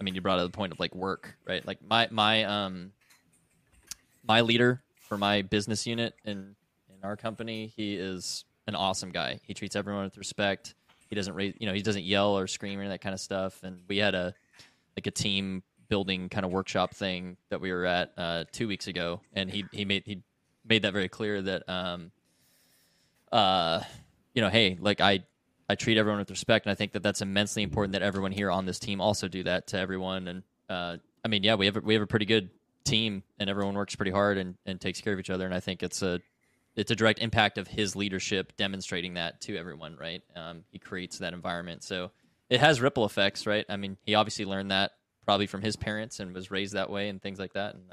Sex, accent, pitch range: male, American, 95-105 Hz